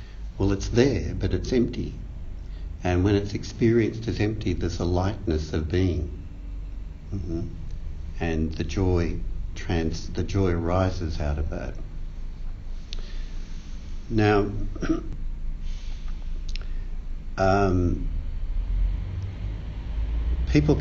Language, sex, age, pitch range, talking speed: English, male, 60-79, 80-95 Hz, 85 wpm